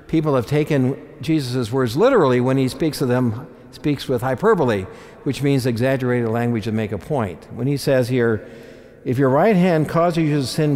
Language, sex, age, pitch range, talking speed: English, male, 60-79, 115-150 Hz, 190 wpm